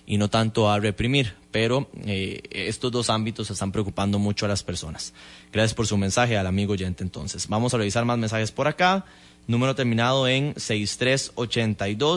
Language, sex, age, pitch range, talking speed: English, male, 20-39, 105-130 Hz, 180 wpm